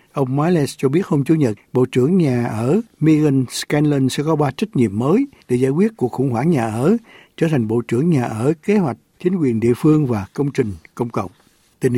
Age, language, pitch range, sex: 60-79, Vietnamese, 120-165 Hz, male